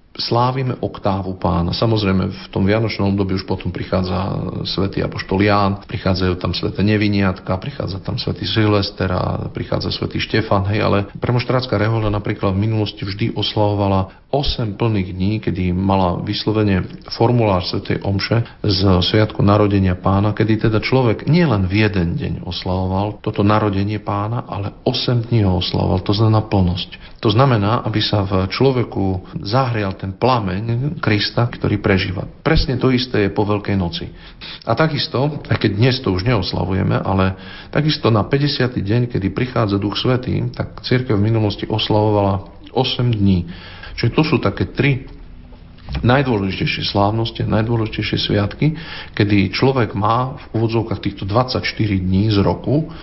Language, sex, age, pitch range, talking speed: Slovak, male, 40-59, 95-120 Hz, 145 wpm